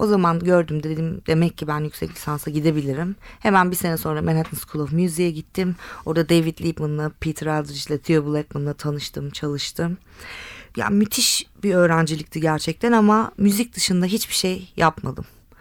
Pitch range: 155-200 Hz